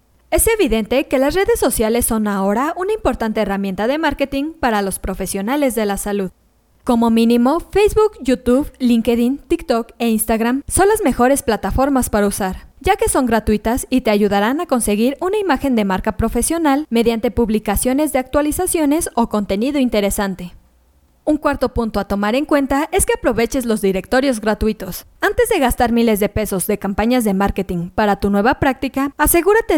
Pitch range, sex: 210-290 Hz, female